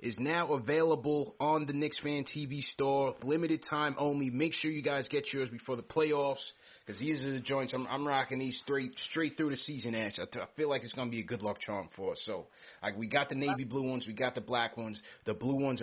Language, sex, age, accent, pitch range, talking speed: English, male, 30-49, American, 115-140 Hz, 250 wpm